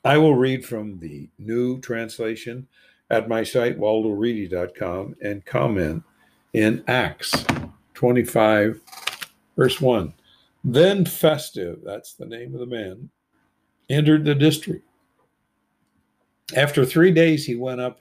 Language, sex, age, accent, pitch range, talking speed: English, male, 60-79, American, 100-125 Hz, 115 wpm